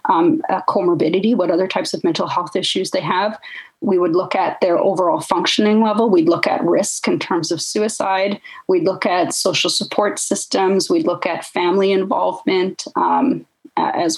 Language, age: English, 30-49